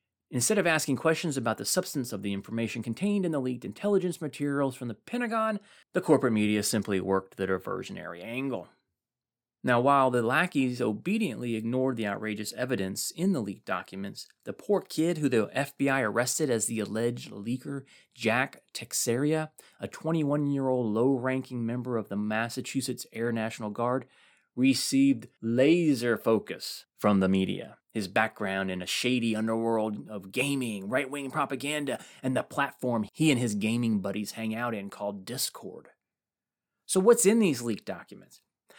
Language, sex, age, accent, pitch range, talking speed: English, male, 30-49, American, 110-155 Hz, 150 wpm